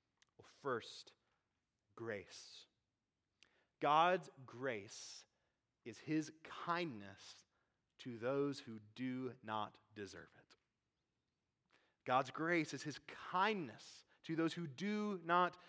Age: 30-49